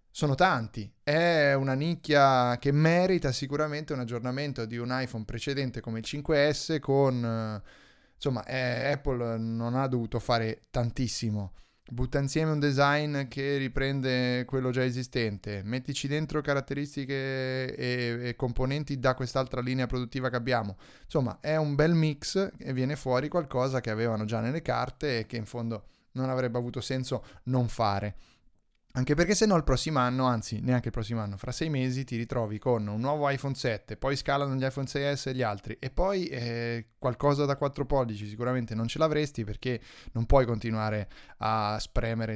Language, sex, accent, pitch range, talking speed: Italian, male, native, 115-140 Hz, 165 wpm